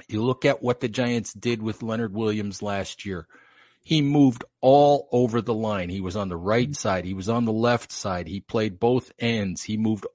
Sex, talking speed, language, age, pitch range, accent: male, 215 wpm, English, 50-69, 105-130 Hz, American